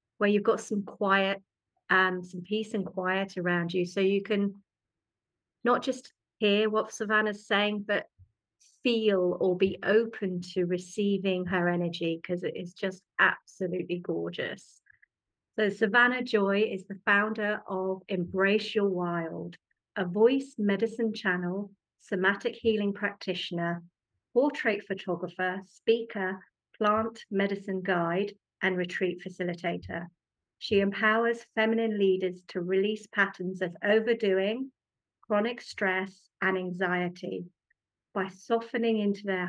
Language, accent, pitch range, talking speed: English, British, 180-210 Hz, 120 wpm